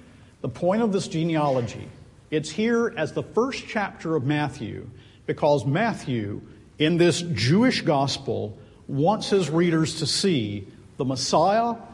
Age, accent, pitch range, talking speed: 50-69, American, 120-170 Hz, 130 wpm